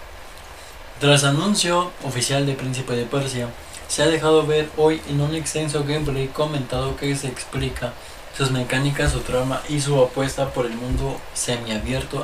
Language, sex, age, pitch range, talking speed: Spanish, male, 20-39, 115-140 Hz, 150 wpm